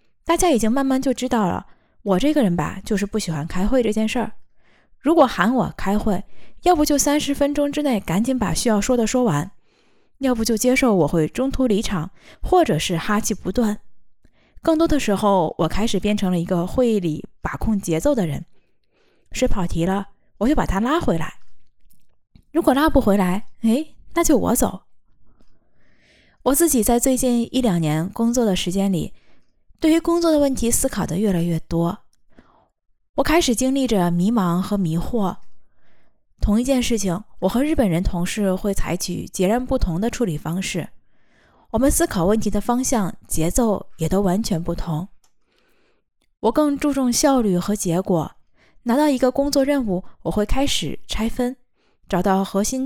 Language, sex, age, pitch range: Chinese, female, 20-39, 185-260 Hz